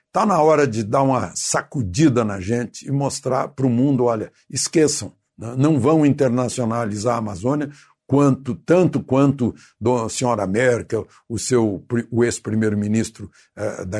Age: 60-79